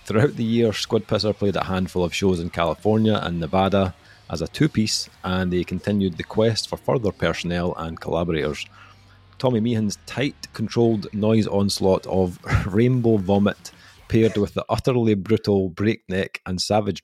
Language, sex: English, male